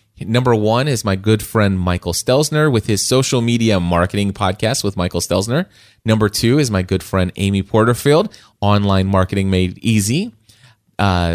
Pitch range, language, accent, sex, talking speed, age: 100-125 Hz, English, American, male, 160 wpm, 30-49